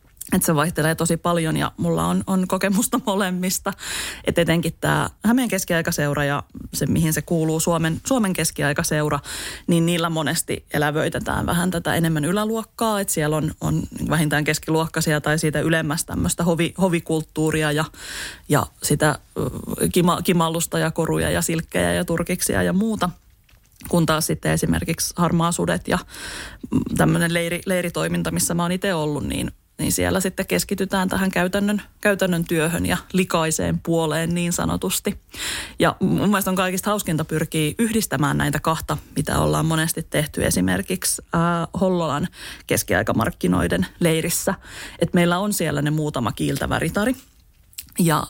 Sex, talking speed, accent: female, 140 wpm, native